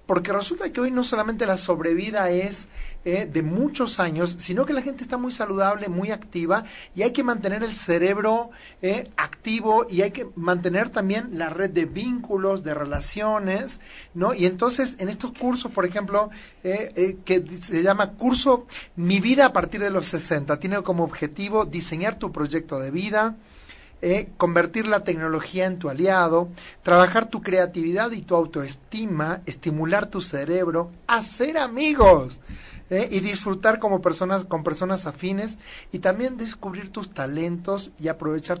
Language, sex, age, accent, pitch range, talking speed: Spanish, male, 40-59, Mexican, 175-220 Hz, 160 wpm